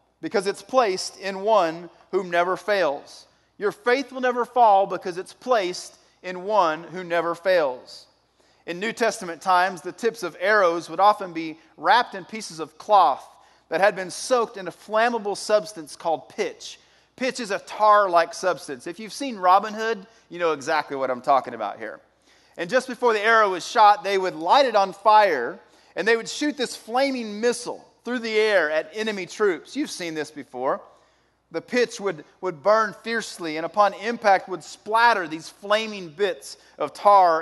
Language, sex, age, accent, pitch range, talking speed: English, male, 30-49, American, 170-225 Hz, 180 wpm